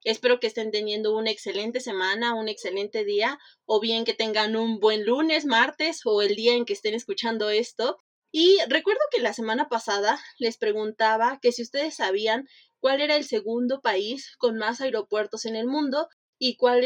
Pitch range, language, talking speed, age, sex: 215-280 Hz, Spanish, 180 wpm, 20-39, female